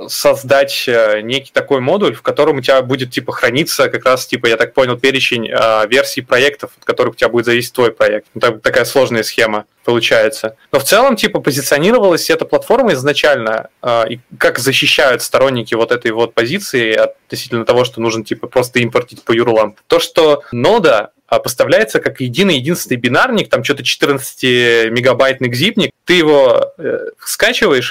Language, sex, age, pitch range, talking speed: Russian, male, 20-39, 120-150 Hz, 165 wpm